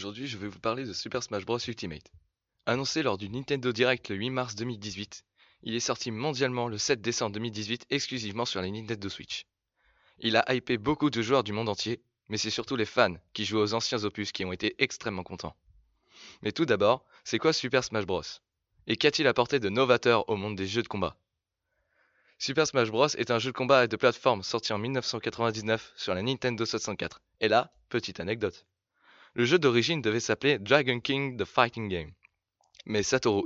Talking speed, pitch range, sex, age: 195 wpm, 105-130 Hz, male, 20-39